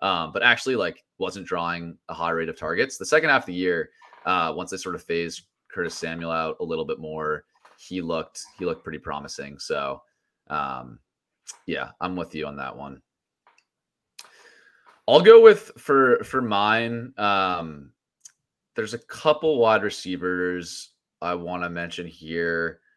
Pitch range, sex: 85-120 Hz, male